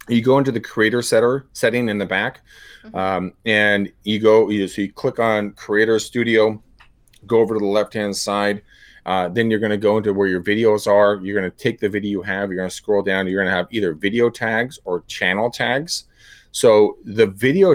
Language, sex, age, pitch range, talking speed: English, male, 30-49, 100-120 Hz, 215 wpm